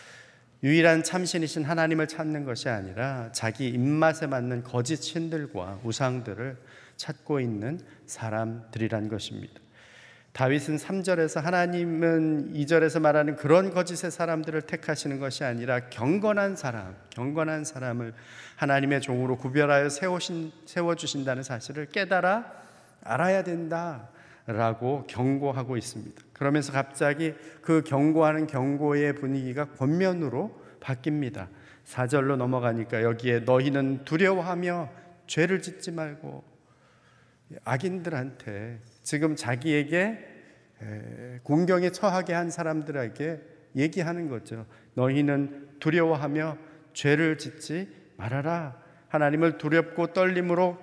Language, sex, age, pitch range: Korean, male, 40-59, 130-165 Hz